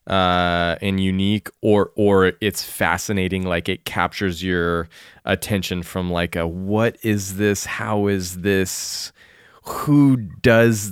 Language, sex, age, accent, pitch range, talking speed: English, male, 20-39, American, 90-110 Hz, 125 wpm